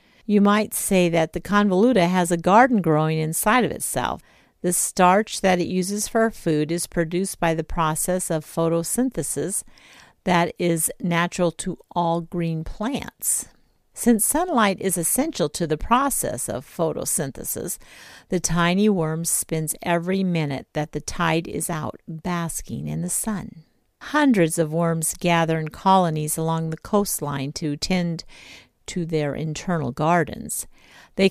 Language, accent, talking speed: English, American, 140 wpm